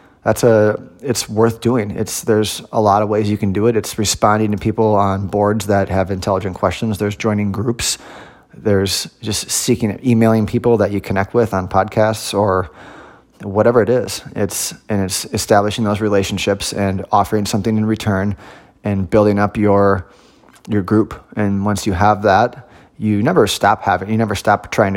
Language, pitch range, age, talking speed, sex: English, 95-110 Hz, 20-39, 175 wpm, male